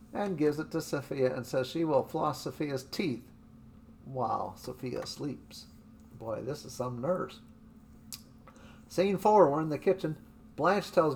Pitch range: 130-175 Hz